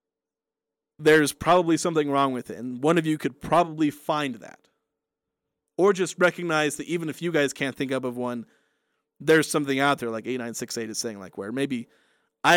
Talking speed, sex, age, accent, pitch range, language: 190 wpm, male, 30-49, American, 145-180 Hz, English